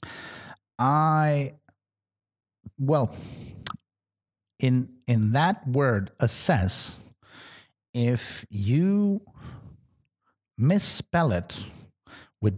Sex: male